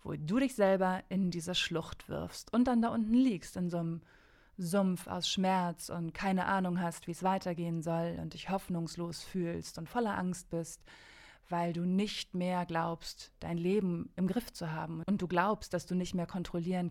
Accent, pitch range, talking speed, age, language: German, 170-195 Hz, 190 wpm, 20-39, German